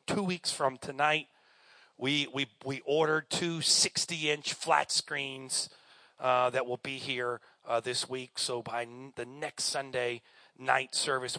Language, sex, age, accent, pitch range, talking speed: English, male, 40-59, American, 125-145 Hz, 150 wpm